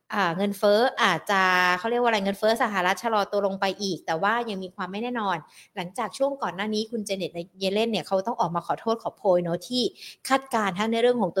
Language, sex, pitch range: Thai, female, 195-250 Hz